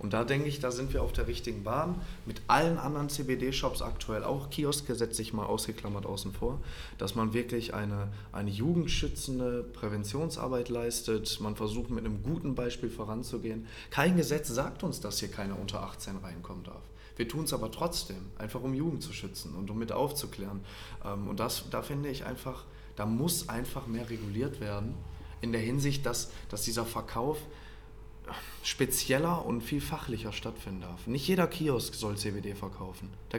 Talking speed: 170 wpm